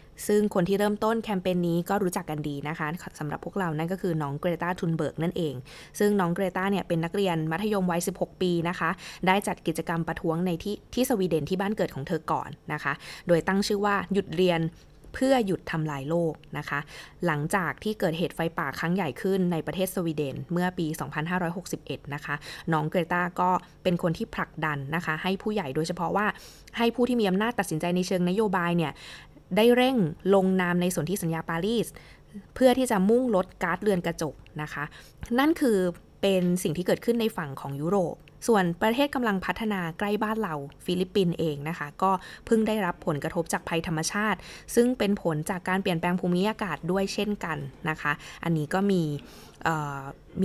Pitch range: 165-205 Hz